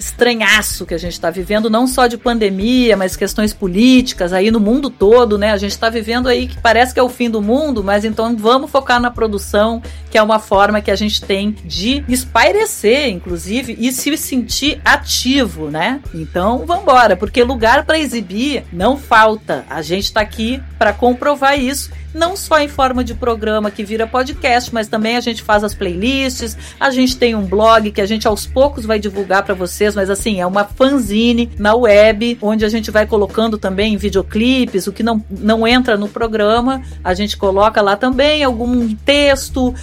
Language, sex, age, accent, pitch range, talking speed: Portuguese, female, 50-69, Brazilian, 210-250 Hz, 190 wpm